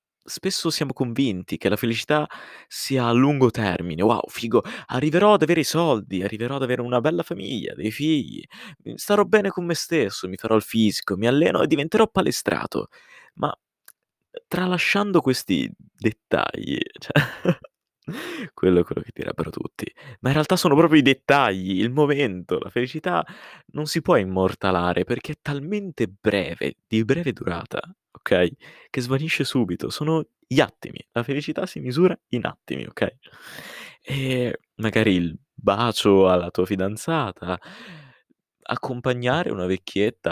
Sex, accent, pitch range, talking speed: male, native, 100-155 Hz, 140 wpm